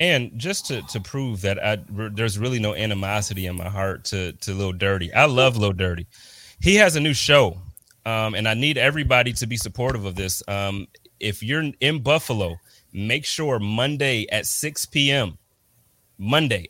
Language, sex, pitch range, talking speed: English, male, 105-140 Hz, 180 wpm